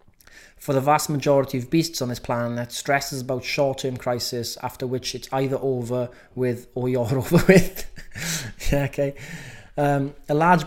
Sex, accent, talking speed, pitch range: male, British, 165 wpm, 125-145 Hz